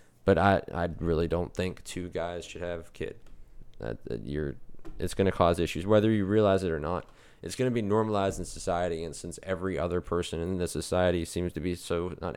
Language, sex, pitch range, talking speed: English, male, 85-100 Hz, 210 wpm